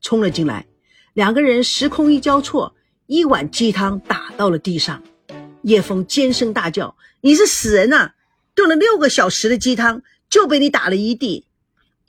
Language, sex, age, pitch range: Chinese, female, 50-69, 190-290 Hz